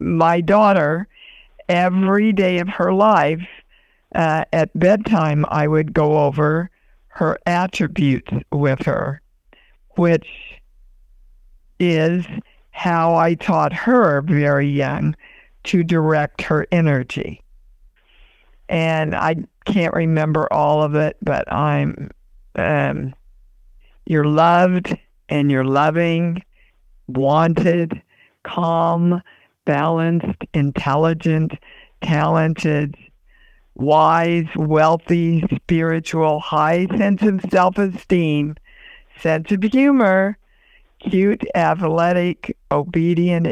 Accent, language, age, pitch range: American, English, 60-79, 155-185 Hz